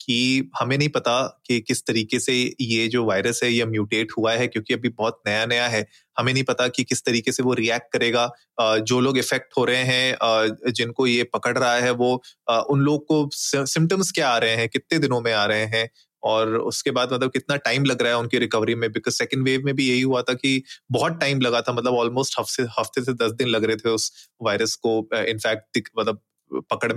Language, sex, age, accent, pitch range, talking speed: Hindi, male, 30-49, native, 115-135 Hz, 220 wpm